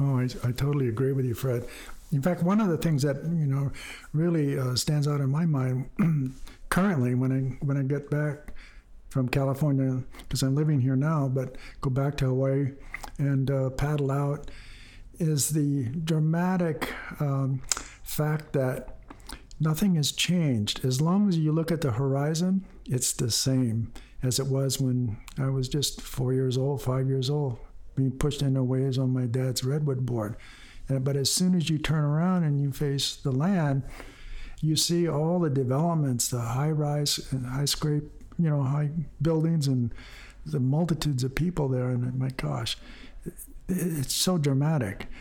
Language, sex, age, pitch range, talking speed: English, male, 60-79, 130-155 Hz, 165 wpm